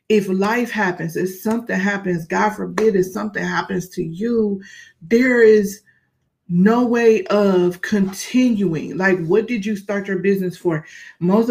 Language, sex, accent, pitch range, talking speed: English, female, American, 180-215 Hz, 145 wpm